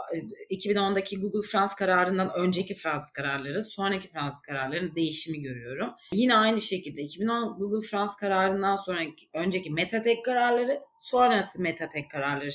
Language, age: Turkish, 30-49